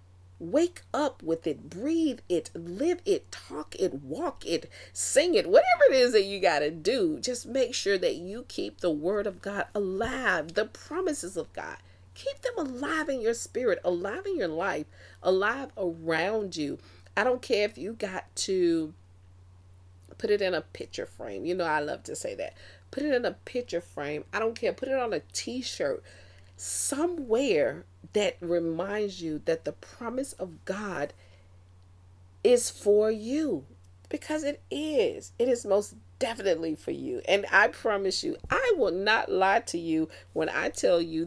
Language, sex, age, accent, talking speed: English, female, 40-59, American, 175 wpm